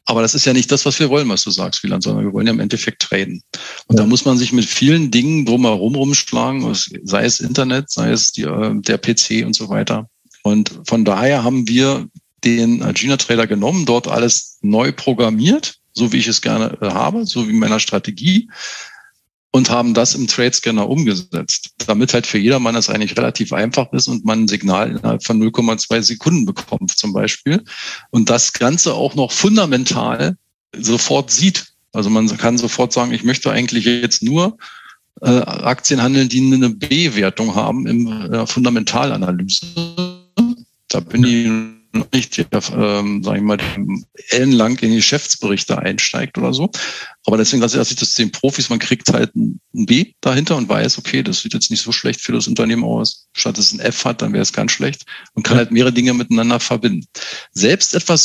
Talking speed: 185 wpm